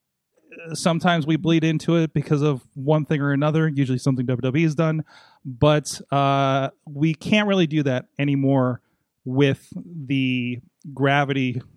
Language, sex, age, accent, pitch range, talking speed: English, male, 30-49, American, 135-160 Hz, 140 wpm